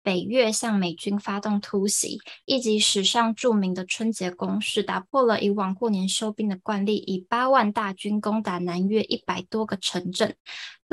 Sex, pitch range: female, 195-225 Hz